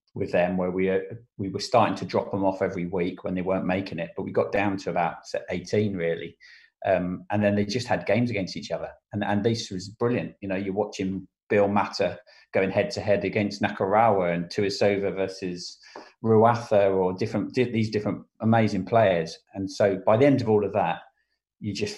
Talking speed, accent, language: 200 wpm, British, English